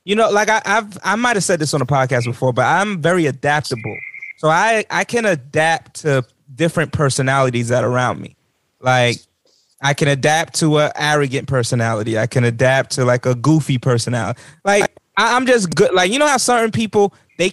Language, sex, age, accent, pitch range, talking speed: English, male, 20-39, American, 135-195 Hz, 190 wpm